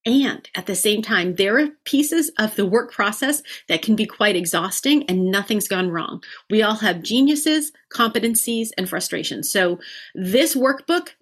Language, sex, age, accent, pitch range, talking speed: English, female, 40-59, American, 185-240 Hz, 165 wpm